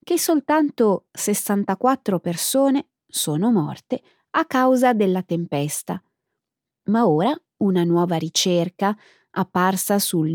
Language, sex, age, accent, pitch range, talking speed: Italian, female, 20-39, native, 175-255 Hz, 100 wpm